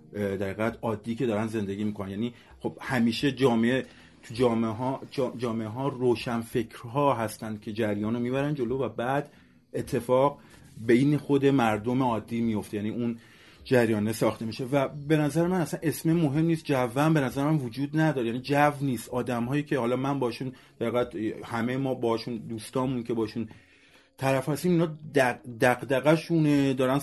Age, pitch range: 30-49, 120-150 Hz